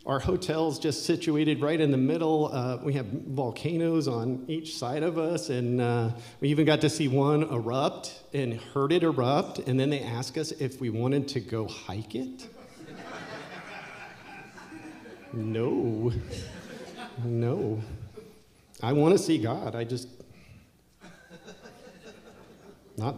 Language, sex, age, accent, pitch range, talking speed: English, male, 40-59, American, 115-140 Hz, 130 wpm